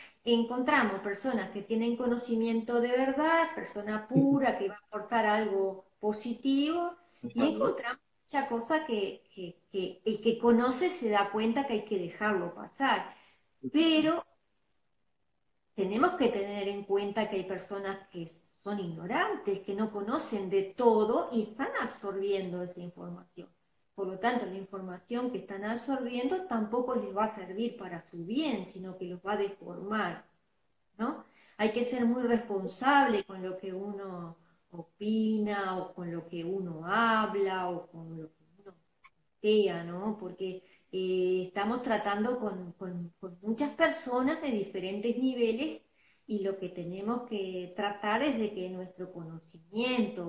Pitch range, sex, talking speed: 185-235 Hz, female, 150 wpm